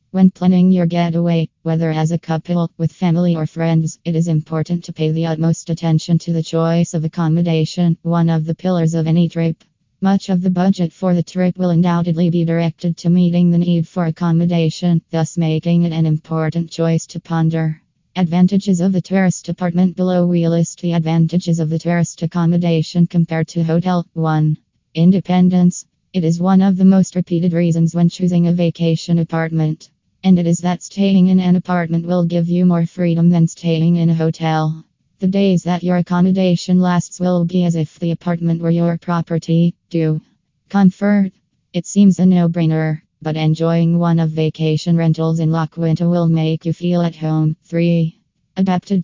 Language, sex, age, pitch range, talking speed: English, female, 20-39, 165-180 Hz, 175 wpm